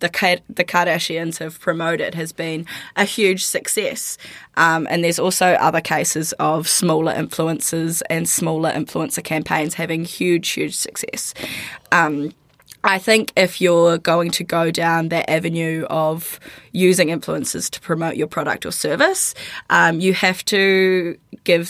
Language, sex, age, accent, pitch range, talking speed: English, female, 20-39, Australian, 160-180 Hz, 140 wpm